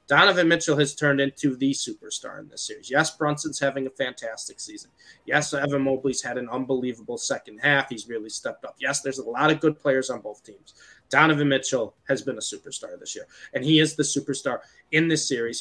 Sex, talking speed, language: male, 210 wpm, English